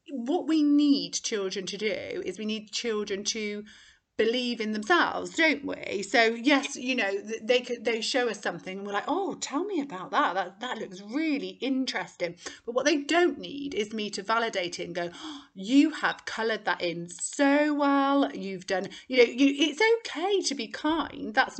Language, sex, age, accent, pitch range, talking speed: English, female, 30-49, British, 195-270 Hz, 190 wpm